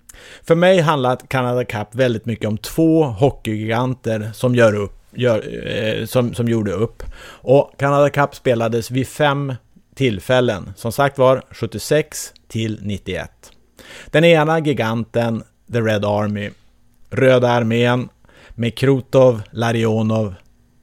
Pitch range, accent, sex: 110-130 Hz, Norwegian, male